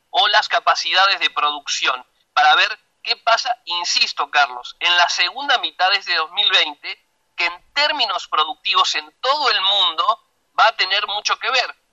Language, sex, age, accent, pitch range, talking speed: Spanish, male, 40-59, Argentinian, 160-220 Hz, 155 wpm